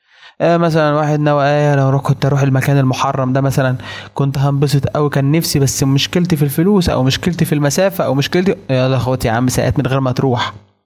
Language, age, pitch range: Arabic, 20-39, 130-160 Hz